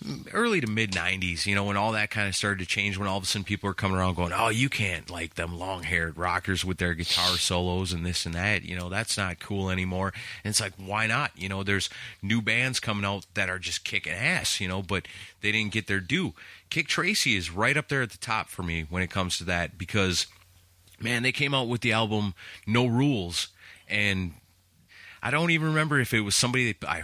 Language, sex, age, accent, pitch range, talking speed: English, male, 30-49, American, 95-120 Hz, 240 wpm